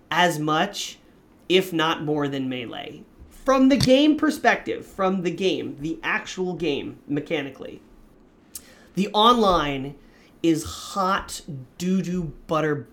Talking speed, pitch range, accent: 110 wpm, 140-180 Hz, American